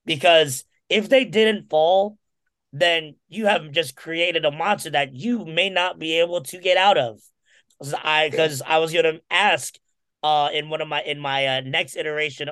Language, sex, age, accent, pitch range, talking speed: English, male, 30-49, American, 150-210 Hz, 170 wpm